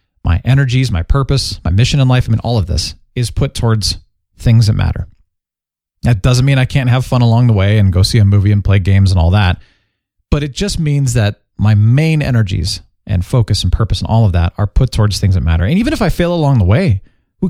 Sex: male